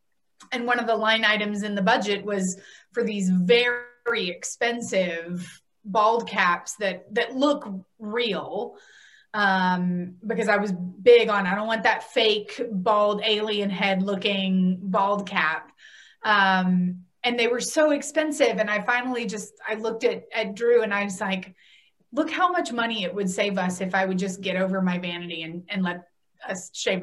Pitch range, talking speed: 185-230 Hz, 170 wpm